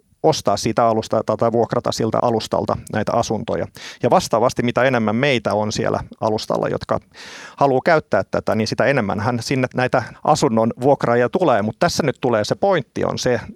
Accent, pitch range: native, 105-130 Hz